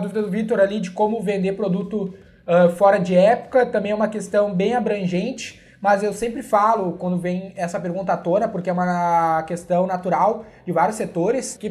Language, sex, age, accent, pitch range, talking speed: Portuguese, male, 20-39, Brazilian, 175-215 Hz, 190 wpm